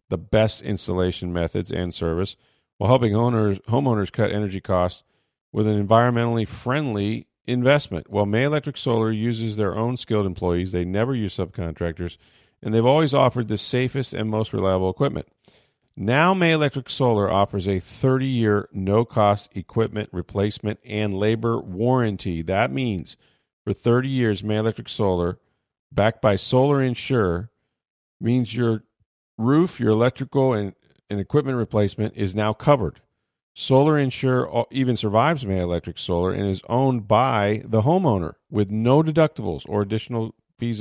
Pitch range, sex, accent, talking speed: 95-125 Hz, male, American, 140 wpm